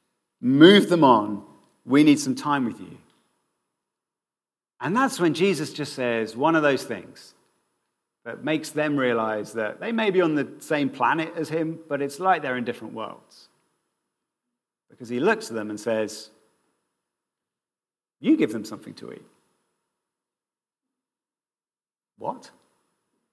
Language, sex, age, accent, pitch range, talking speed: English, male, 40-59, British, 140-235 Hz, 140 wpm